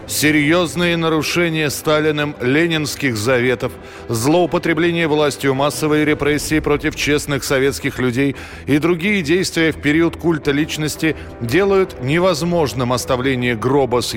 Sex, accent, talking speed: male, native, 105 wpm